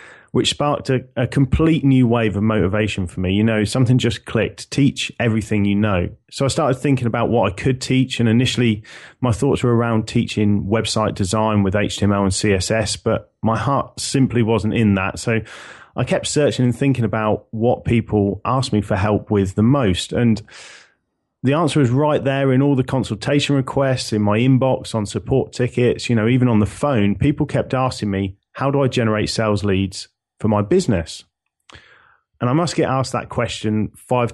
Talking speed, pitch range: 190 wpm, 105-130 Hz